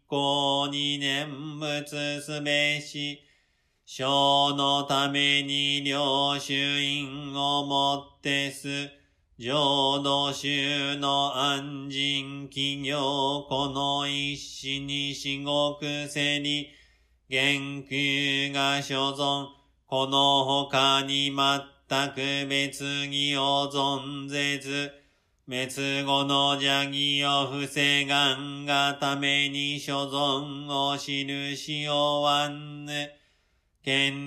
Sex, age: male, 40-59